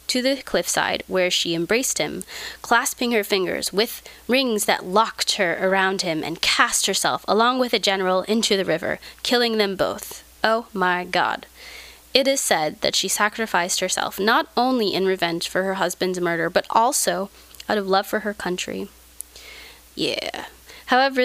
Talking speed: 165 wpm